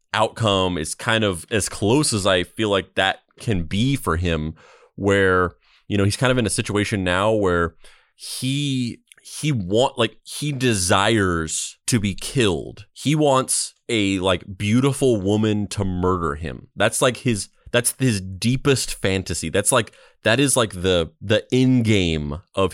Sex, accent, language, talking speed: male, American, English, 160 wpm